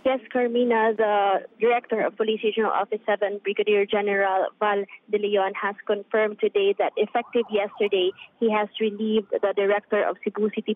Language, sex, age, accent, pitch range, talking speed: English, female, 20-39, Filipino, 195-220 Hz, 155 wpm